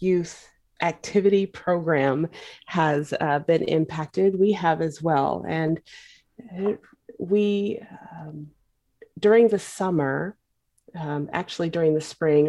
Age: 30-49